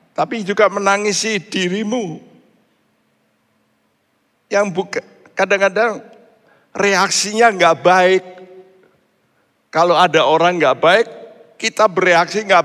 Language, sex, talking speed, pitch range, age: Indonesian, male, 85 wpm, 170-230 Hz, 60-79